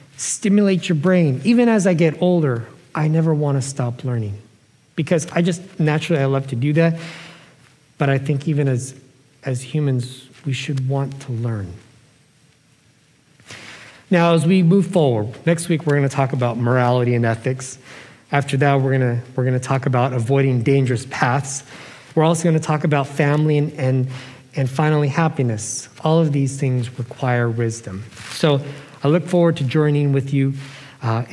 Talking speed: 170 wpm